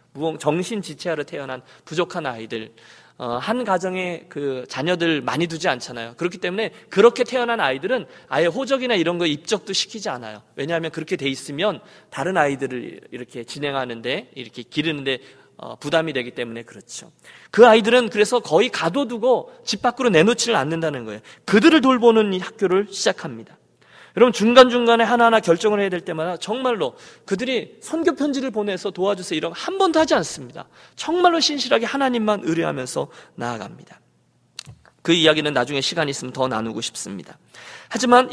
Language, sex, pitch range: Korean, male, 155-245 Hz